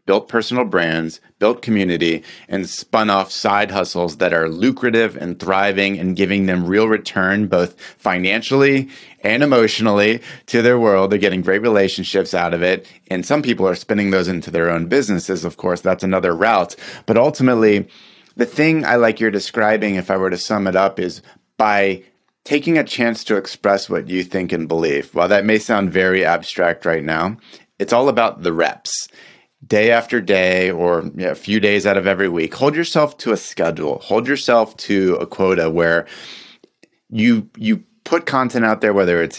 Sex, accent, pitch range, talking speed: male, American, 95-115 Hz, 185 wpm